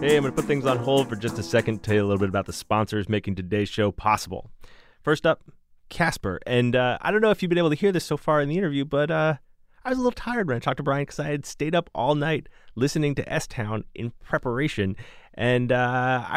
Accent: American